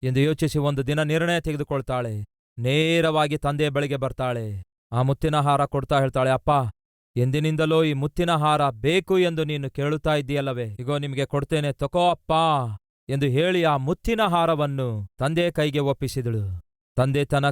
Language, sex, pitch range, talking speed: Kannada, male, 130-155 Hz, 125 wpm